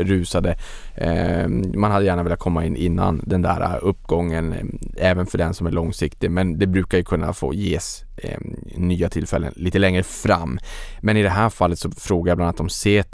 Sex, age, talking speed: male, 20-39, 185 wpm